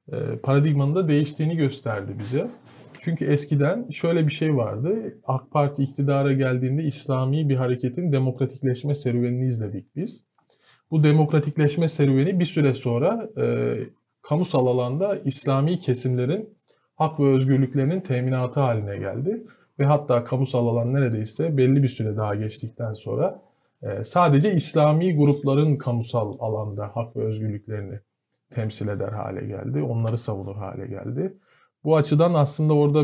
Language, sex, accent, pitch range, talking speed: Turkish, male, native, 120-145 Hz, 130 wpm